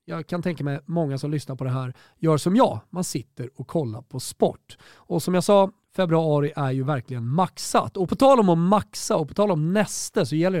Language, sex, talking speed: Swedish, male, 230 wpm